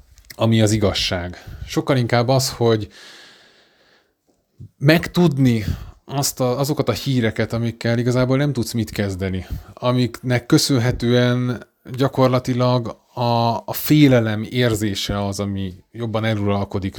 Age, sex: 20-39, male